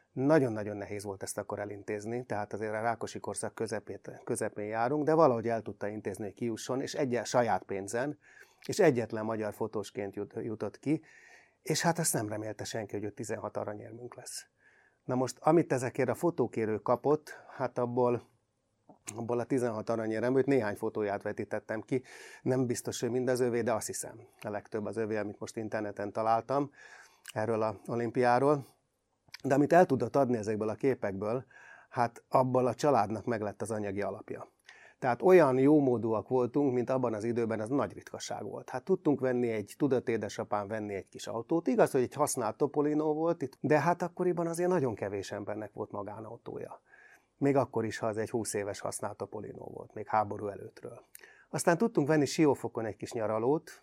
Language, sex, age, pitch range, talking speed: Hungarian, male, 30-49, 110-135 Hz, 175 wpm